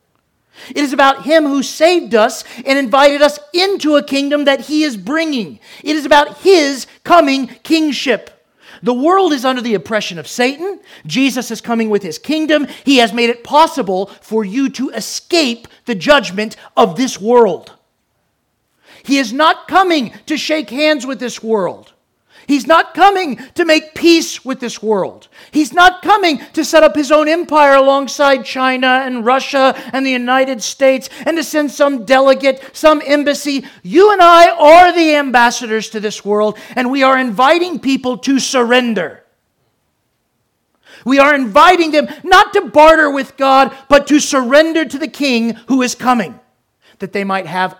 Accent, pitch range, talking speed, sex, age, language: American, 240-305 Hz, 165 wpm, male, 40-59, English